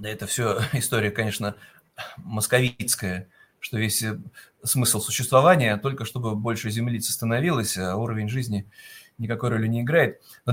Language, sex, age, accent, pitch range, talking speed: Russian, male, 30-49, native, 115-150 Hz, 130 wpm